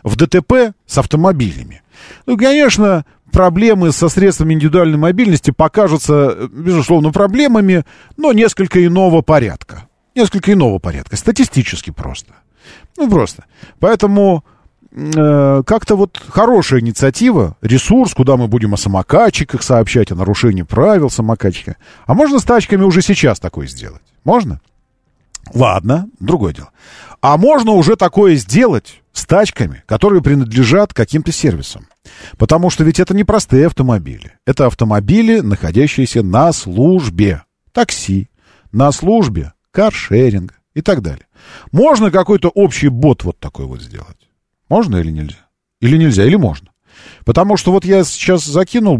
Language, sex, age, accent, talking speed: Russian, male, 40-59, native, 130 wpm